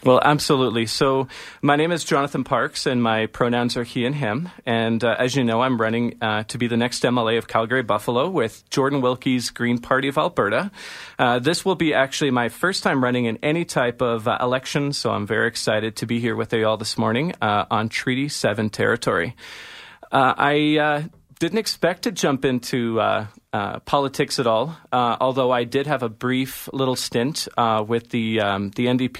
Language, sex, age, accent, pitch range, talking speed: English, male, 40-59, American, 110-130 Hz, 200 wpm